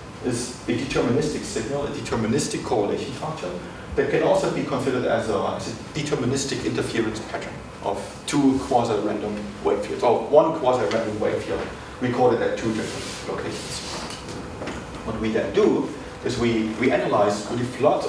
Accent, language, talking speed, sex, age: German, English, 145 wpm, male, 40-59